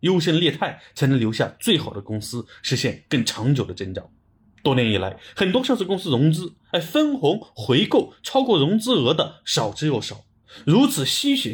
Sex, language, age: male, Chinese, 30-49